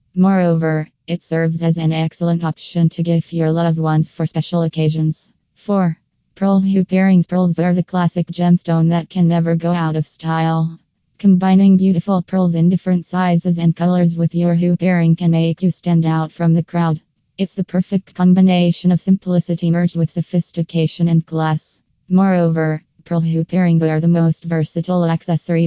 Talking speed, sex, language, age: 165 wpm, female, English, 20-39